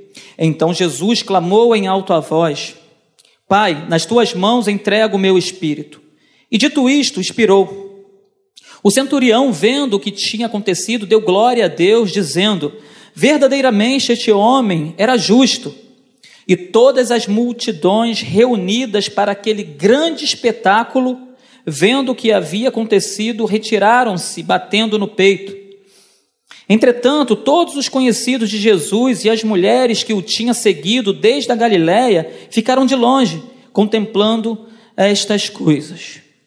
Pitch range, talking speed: 195-245 Hz, 125 wpm